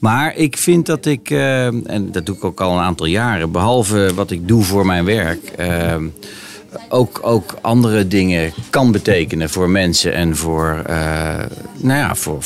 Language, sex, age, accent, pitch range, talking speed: Dutch, male, 40-59, Dutch, 90-110 Hz, 155 wpm